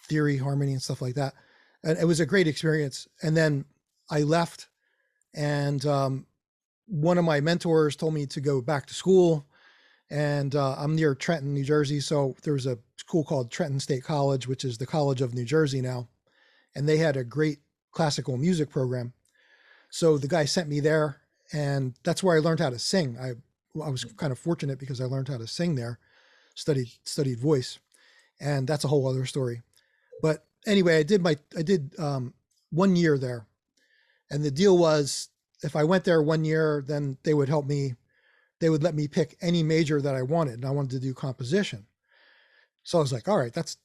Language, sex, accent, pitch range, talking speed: English, male, American, 135-165 Hz, 200 wpm